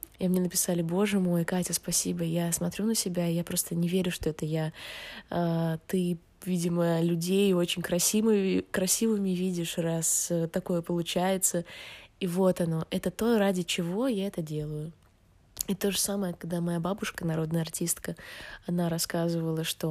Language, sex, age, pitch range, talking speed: Russian, female, 20-39, 170-185 Hz, 155 wpm